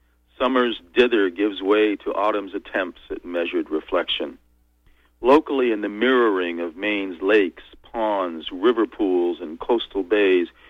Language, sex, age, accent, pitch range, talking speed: English, male, 50-69, American, 95-130 Hz, 130 wpm